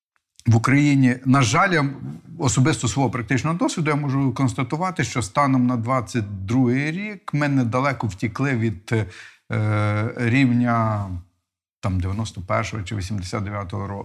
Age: 50-69